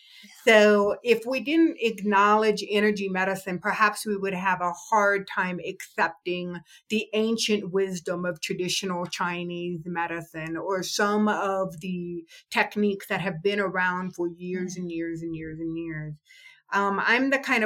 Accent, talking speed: American, 145 wpm